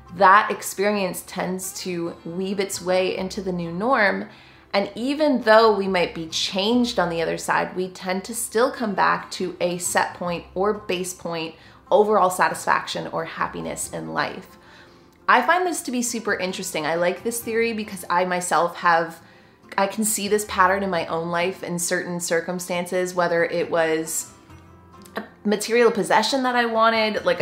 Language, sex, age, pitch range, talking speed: English, female, 20-39, 180-215 Hz, 170 wpm